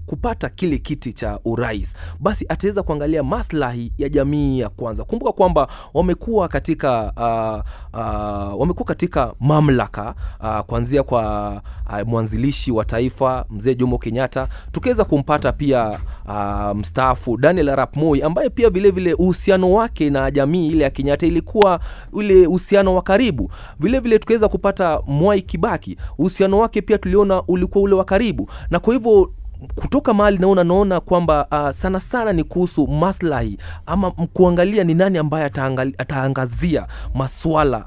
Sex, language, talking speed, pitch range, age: male, Swahili, 145 wpm, 115-180 Hz, 30-49